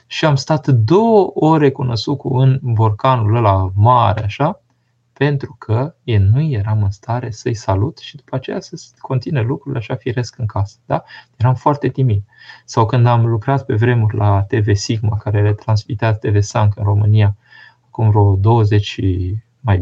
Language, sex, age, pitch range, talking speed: Romanian, male, 20-39, 105-130 Hz, 160 wpm